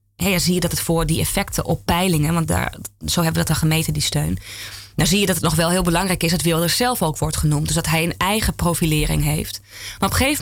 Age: 20-39